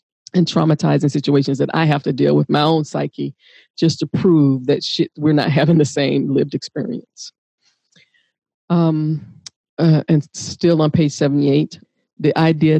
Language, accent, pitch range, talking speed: English, American, 140-160 Hz, 150 wpm